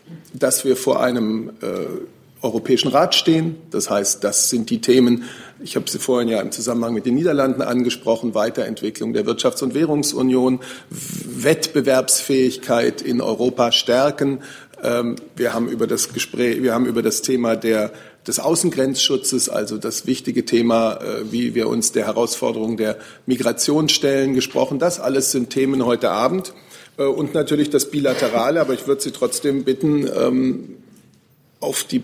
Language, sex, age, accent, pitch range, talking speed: German, male, 40-59, German, 125-155 Hz, 145 wpm